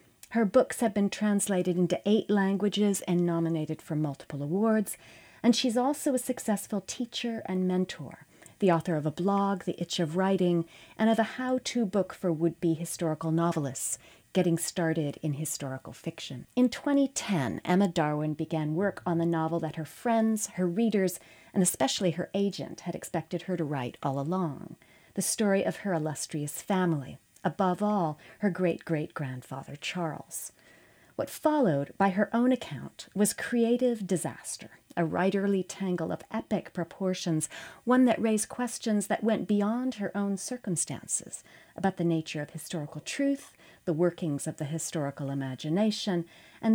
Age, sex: 40-59, female